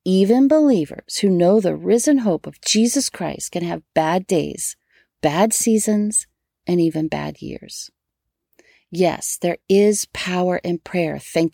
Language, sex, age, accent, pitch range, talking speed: English, female, 40-59, American, 175-230 Hz, 140 wpm